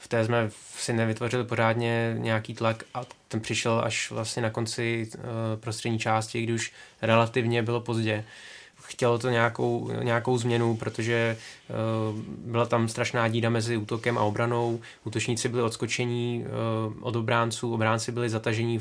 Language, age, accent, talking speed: Czech, 20-39, native, 140 wpm